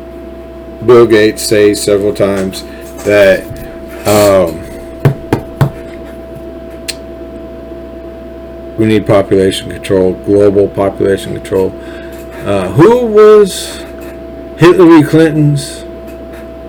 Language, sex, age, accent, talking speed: English, male, 50-69, American, 70 wpm